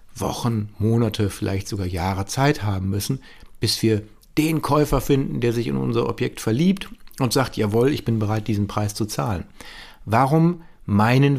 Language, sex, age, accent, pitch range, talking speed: German, male, 50-69, German, 100-140 Hz, 165 wpm